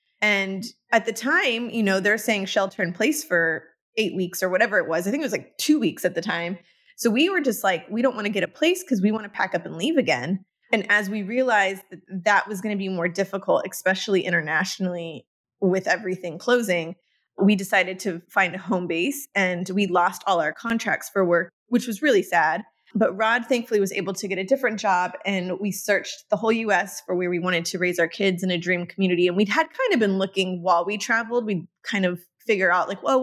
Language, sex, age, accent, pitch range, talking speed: English, female, 20-39, American, 180-225 Hz, 235 wpm